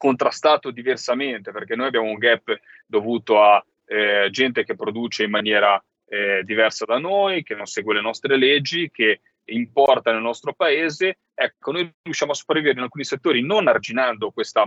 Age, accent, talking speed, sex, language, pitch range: 30-49, native, 170 wpm, male, Italian, 110-145 Hz